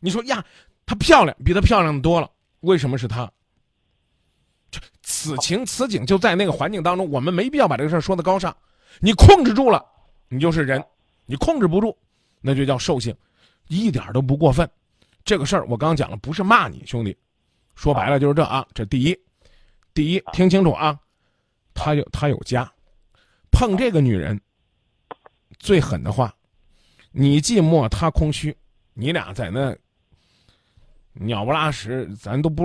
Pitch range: 120-190 Hz